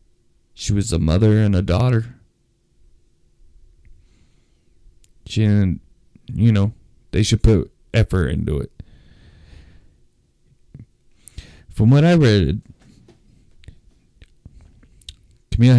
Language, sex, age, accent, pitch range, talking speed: English, male, 20-39, American, 85-100 Hz, 85 wpm